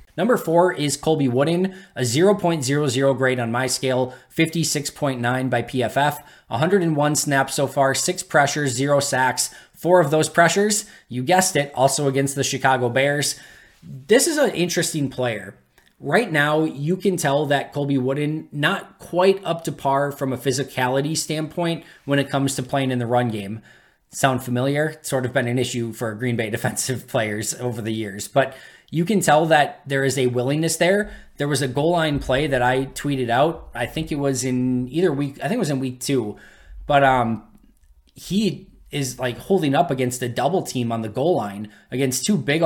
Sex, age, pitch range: male, 20-39, 125-155 Hz